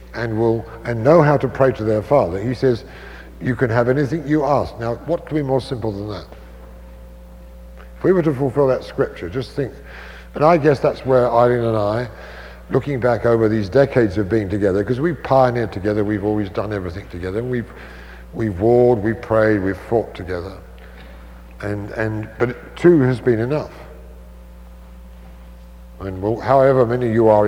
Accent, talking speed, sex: British, 180 wpm, male